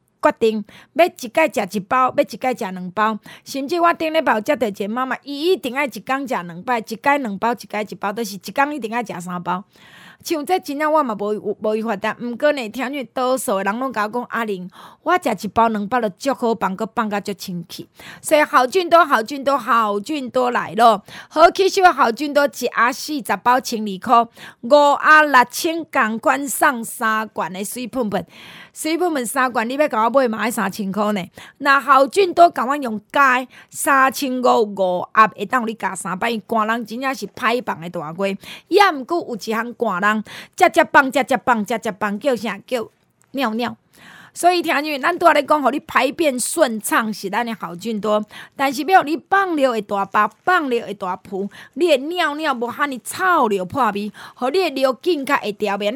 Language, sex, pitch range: Chinese, female, 210-285 Hz